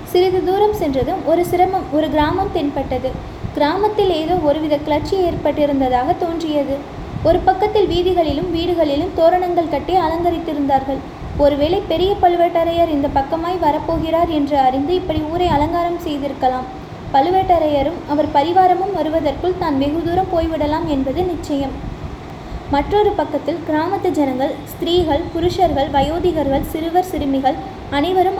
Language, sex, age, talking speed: Tamil, female, 20-39, 110 wpm